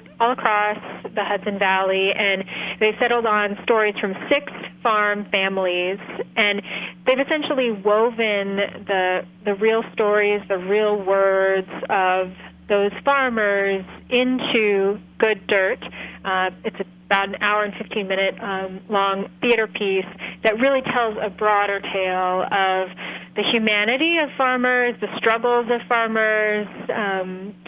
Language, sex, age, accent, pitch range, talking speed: English, female, 30-49, American, 195-225 Hz, 130 wpm